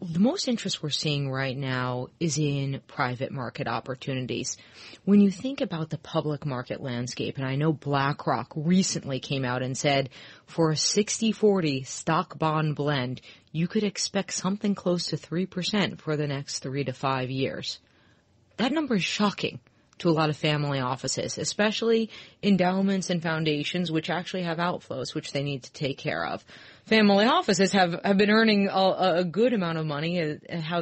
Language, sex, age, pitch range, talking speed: English, female, 30-49, 145-185 Hz, 170 wpm